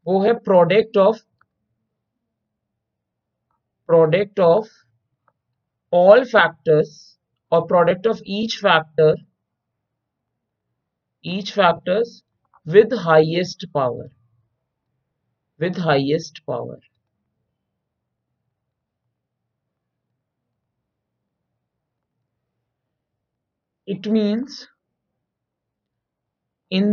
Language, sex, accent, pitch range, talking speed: Hindi, male, native, 120-195 Hz, 50 wpm